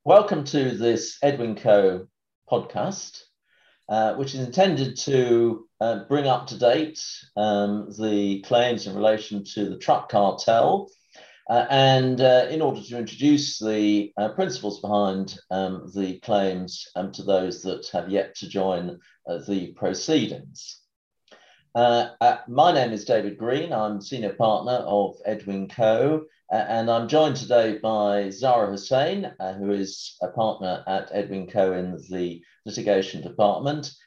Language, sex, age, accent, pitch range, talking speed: English, male, 50-69, British, 100-130 Hz, 145 wpm